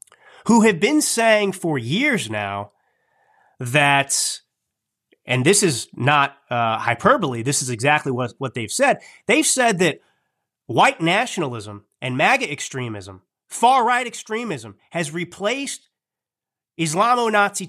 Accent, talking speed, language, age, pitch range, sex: American, 115 wpm, English, 30-49, 135-215 Hz, male